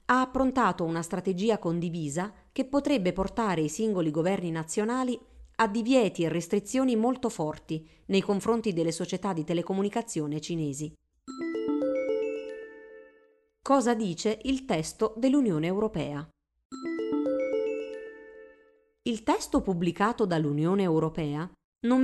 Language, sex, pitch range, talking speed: Italian, female, 165-235 Hz, 100 wpm